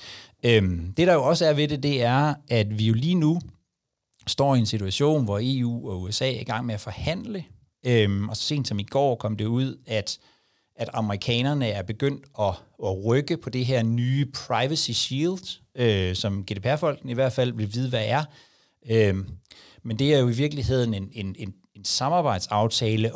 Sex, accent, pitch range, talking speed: male, native, 105-135 Hz, 180 wpm